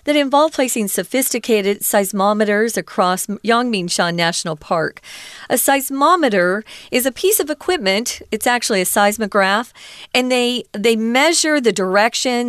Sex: female